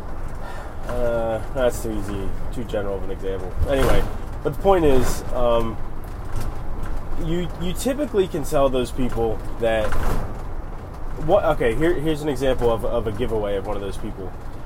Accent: American